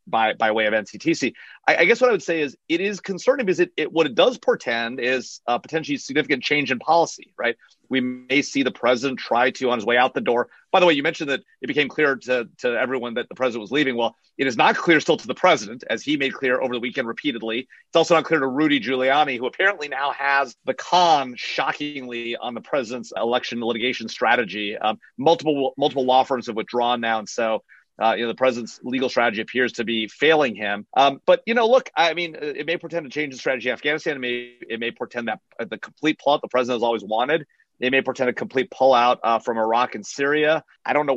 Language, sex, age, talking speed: English, male, 30-49, 240 wpm